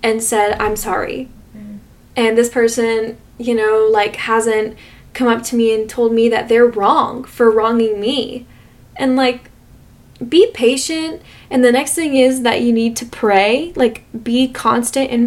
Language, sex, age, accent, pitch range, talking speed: English, female, 10-29, American, 215-245 Hz, 165 wpm